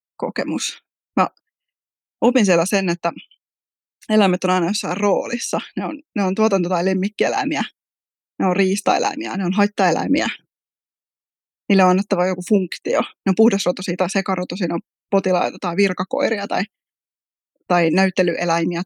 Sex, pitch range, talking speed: female, 175-205 Hz, 135 wpm